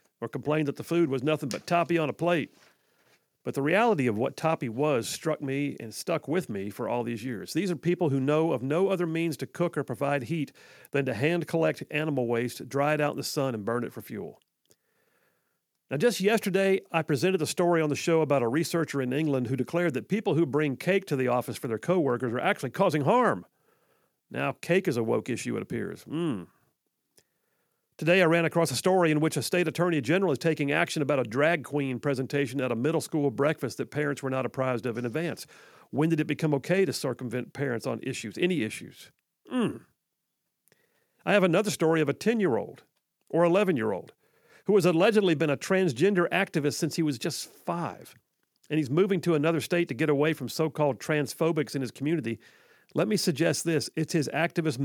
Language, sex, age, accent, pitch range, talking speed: English, male, 50-69, American, 135-170 Hz, 205 wpm